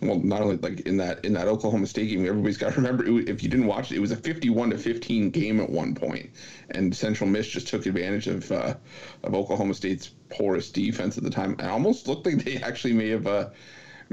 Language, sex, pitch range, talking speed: English, male, 100-125 Hz, 240 wpm